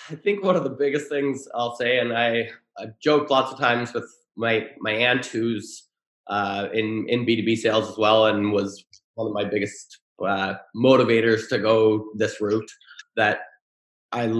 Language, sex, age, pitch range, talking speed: English, male, 20-39, 110-120 Hz, 175 wpm